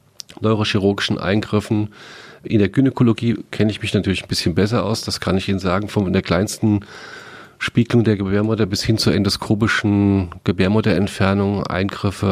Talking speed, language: 145 wpm, German